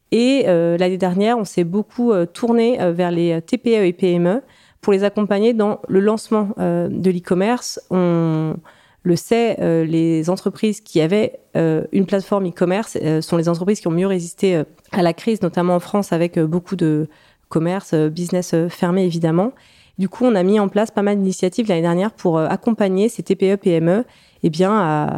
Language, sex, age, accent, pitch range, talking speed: French, female, 30-49, French, 170-210 Hz, 195 wpm